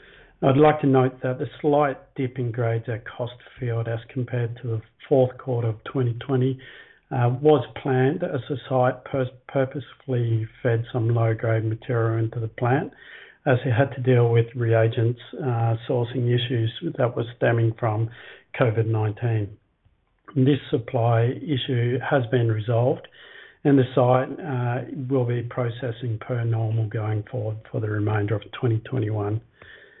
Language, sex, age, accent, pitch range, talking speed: English, male, 50-69, Australian, 115-130 Hz, 145 wpm